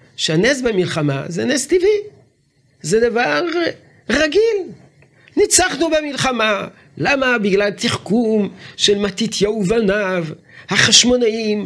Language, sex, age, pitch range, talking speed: Hebrew, male, 50-69, 165-265 Hz, 85 wpm